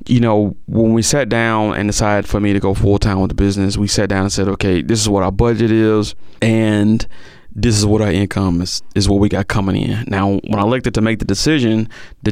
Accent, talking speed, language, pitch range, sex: American, 245 wpm, English, 100-110 Hz, male